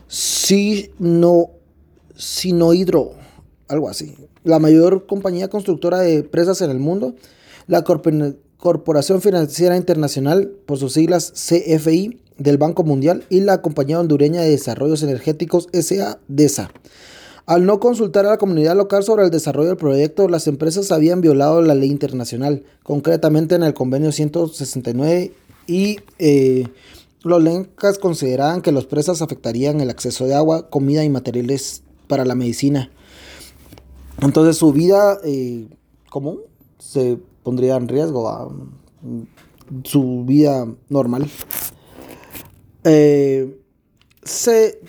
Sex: male